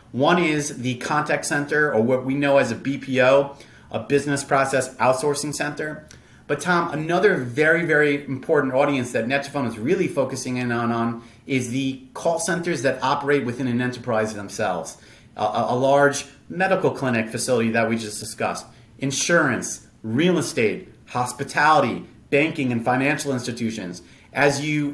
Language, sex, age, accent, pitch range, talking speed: English, male, 30-49, American, 125-150 Hz, 145 wpm